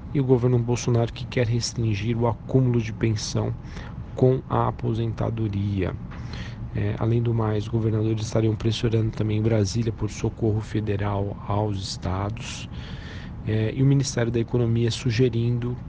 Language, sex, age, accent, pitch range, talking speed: Portuguese, male, 40-59, Brazilian, 105-115 Hz, 125 wpm